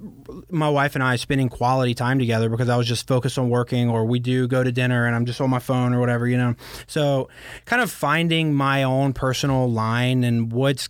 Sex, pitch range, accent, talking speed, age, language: male, 120-140 Hz, American, 225 wpm, 20-39, English